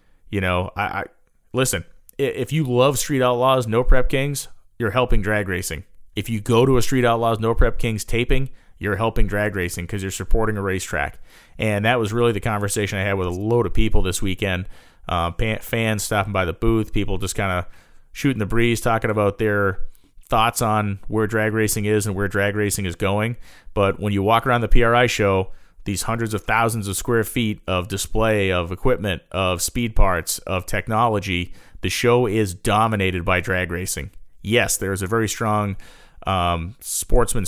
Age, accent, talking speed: 30-49, American, 190 wpm